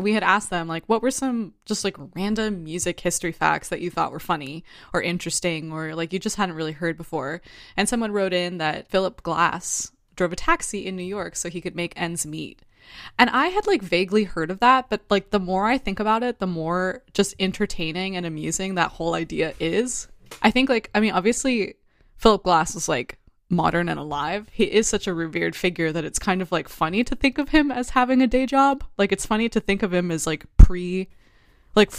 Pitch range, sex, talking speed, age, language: 170-210 Hz, female, 225 wpm, 20-39, English